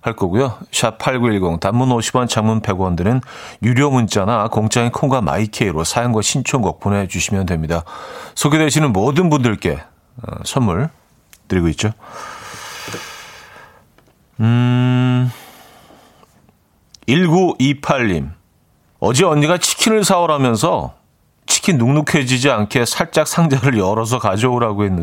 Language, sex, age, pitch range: Korean, male, 40-59, 105-150 Hz